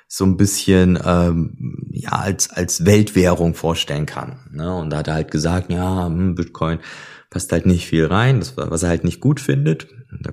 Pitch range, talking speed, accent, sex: 80-100 Hz, 185 wpm, German, male